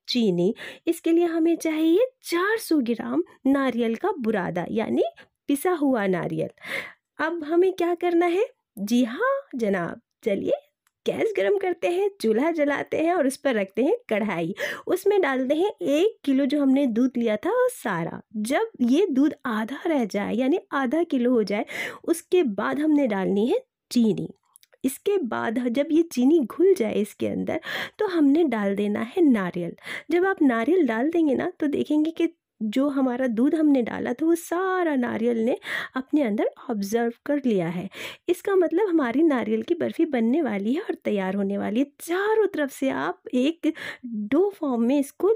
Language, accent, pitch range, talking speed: Hindi, native, 235-335 Hz, 170 wpm